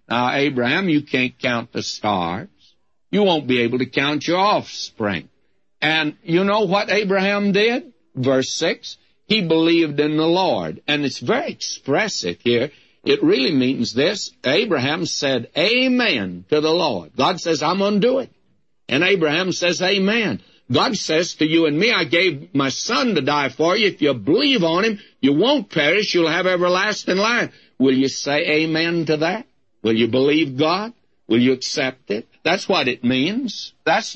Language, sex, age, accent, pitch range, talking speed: English, male, 60-79, American, 135-195 Hz, 175 wpm